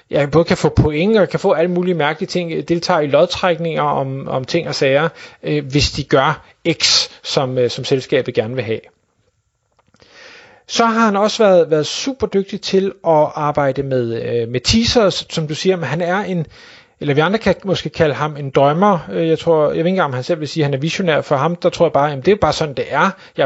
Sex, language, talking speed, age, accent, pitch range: male, Danish, 235 wpm, 30-49, native, 150-190 Hz